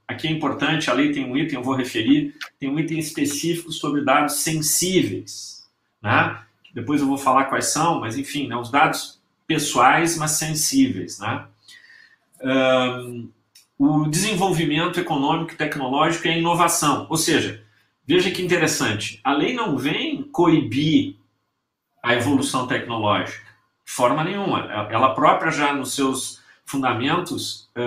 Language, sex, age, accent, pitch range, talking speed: Portuguese, male, 40-59, Brazilian, 125-165 Hz, 140 wpm